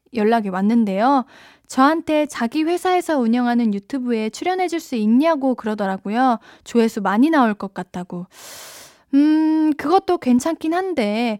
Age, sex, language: 10-29, female, Korean